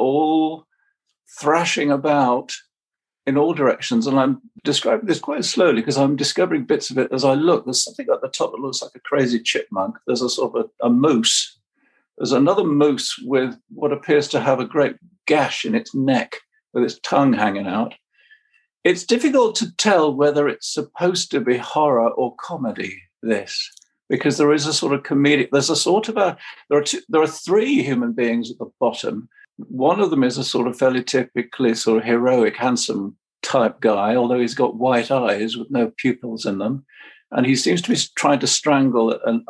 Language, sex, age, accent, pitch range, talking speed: English, male, 50-69, British, 120-180 Hz, 195 wpm